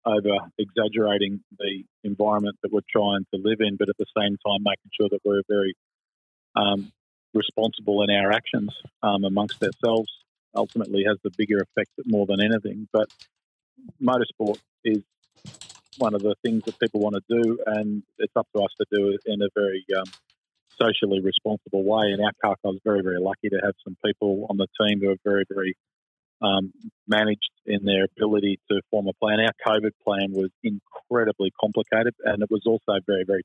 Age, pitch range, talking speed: 50-69, 100-110 Hz, 180 wpm